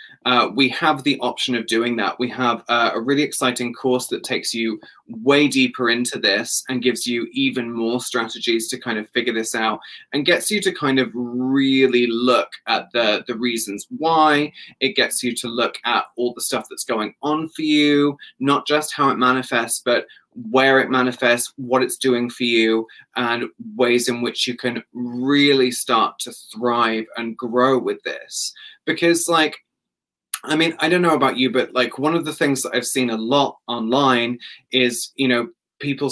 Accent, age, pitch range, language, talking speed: British, 20-39, 120-135 Hz, English, 190 wpm